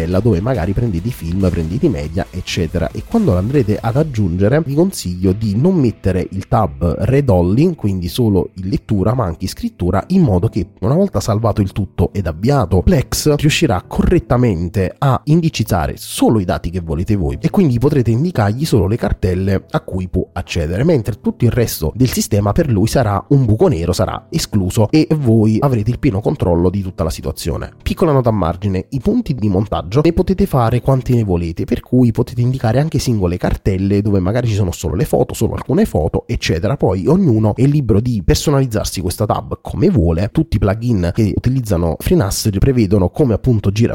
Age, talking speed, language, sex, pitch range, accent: 30-49, 185 wpm, Italian, male, 95-130 Hz, native